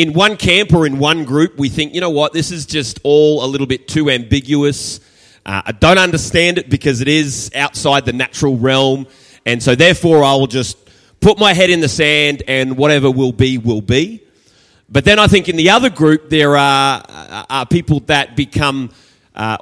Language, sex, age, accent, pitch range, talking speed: English, male, 30-49, Australian, 115-155 Hz, 200 wpm